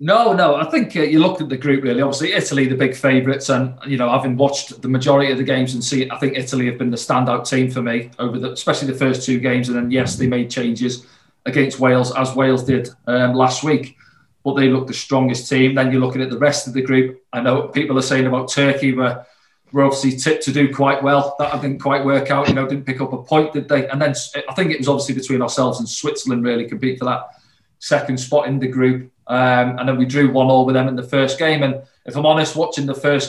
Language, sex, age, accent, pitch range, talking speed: English, male, 40-59, British, 130-140 Hz, 260 wpm